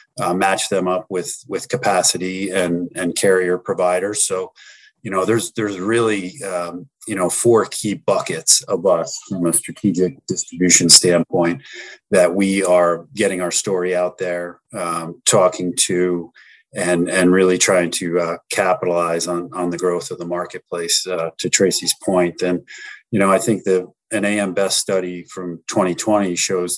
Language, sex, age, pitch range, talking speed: English, male, 40-59, 90-95 Hz, 165 wpm